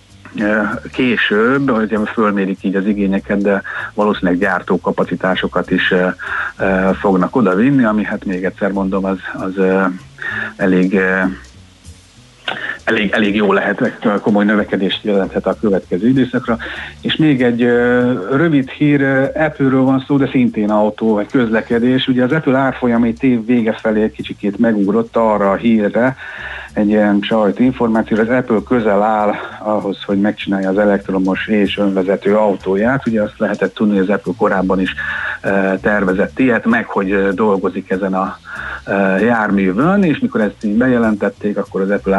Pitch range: 95-120 Hz